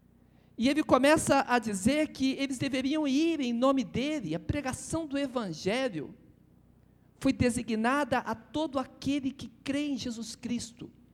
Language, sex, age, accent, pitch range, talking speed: Portuguese, male, 50-69, Brazilian, 190-260 Hz, 140 wpm